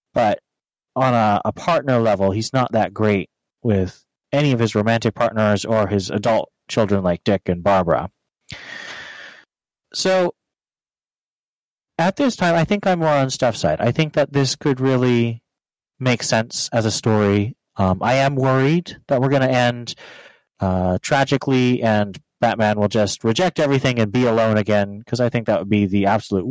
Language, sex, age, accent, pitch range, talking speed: English, male, 30-49, American, 95-125 Hz, 165 wpm